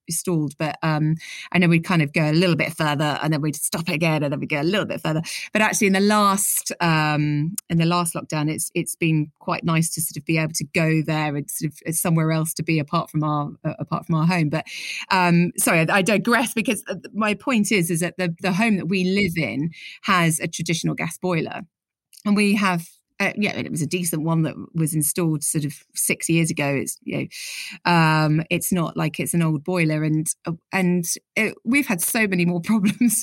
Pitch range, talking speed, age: 160-195 Hz, 230 wpm, 30-49